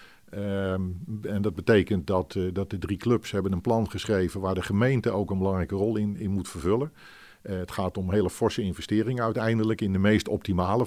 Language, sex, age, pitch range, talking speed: Dutch, male, 50-69, 95-110 Hz, 200 wpm